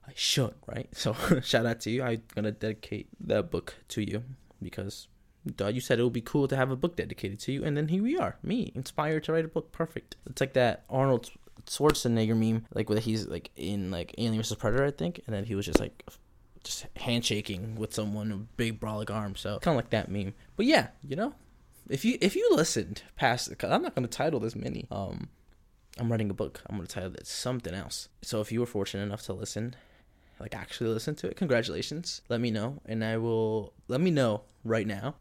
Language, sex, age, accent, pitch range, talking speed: English, male, 20-39, American, 105-130 Hz, 225 wpm